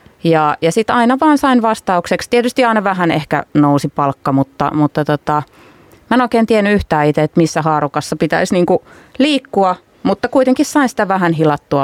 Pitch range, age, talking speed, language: 155-215 Hz, 30-49, 170 wpm, Finnish